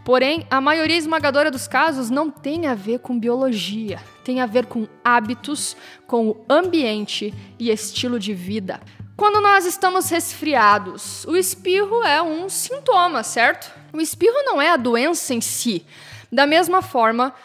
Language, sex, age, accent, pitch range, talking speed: Portuguese, female, 20-39, Brazilian, 235-320 Hz, 155 wpm